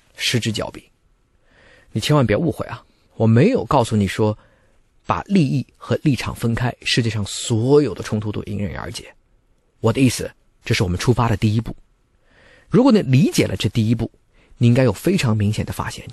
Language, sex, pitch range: Chinese, male, 110-145 Hz